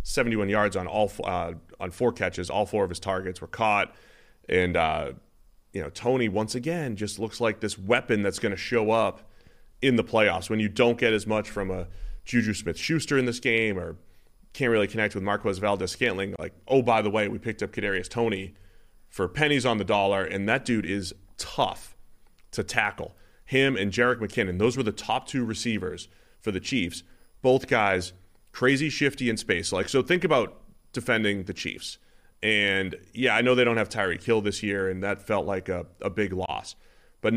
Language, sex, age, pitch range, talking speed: English, male, 30-49, 95-120 Hz, 200 wpm